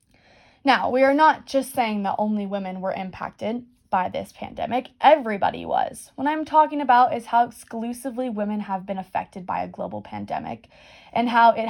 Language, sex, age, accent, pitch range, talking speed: English, female, 20-39, American, 200-255 Hz, 175 wpm